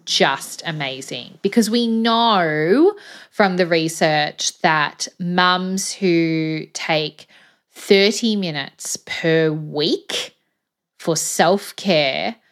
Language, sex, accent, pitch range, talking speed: English, female, Australian, 155-200 Hz, 85 wpm